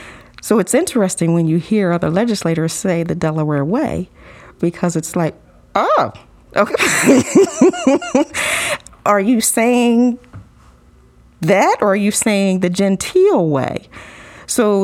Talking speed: 115 wpm